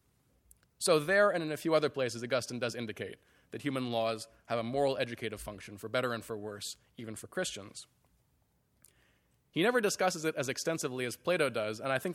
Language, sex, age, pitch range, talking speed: English, male, 20-39, 110-145 Hz, 195 wpm